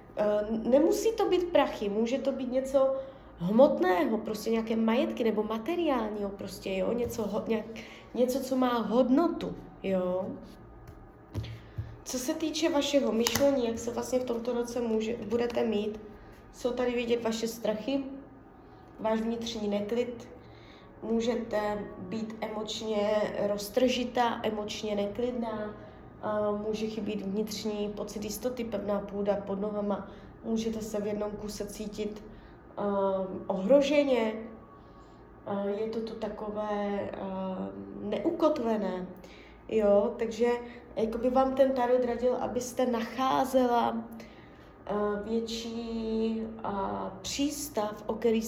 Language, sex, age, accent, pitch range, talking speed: Czech, female, 20-39, native, 210-245 Hz, 110 wpm